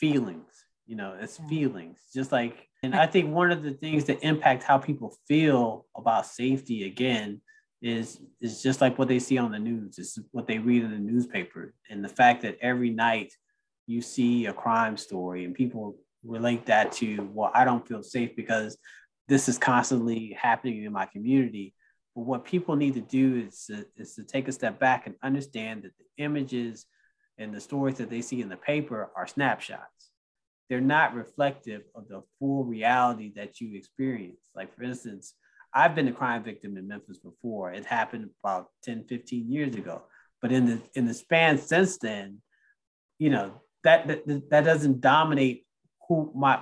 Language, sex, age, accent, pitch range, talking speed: English, male, 20-39, American, 115-140 Hz, 180 wpm